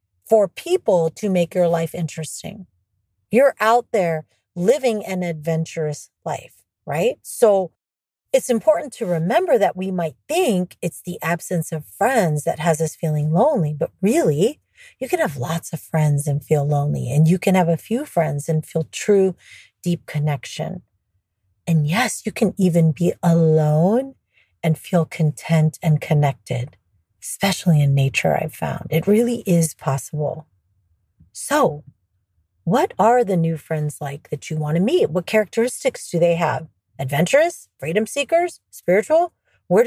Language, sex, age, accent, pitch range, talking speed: English, female, 30-49, American, 150-220 Hz, 150 wpm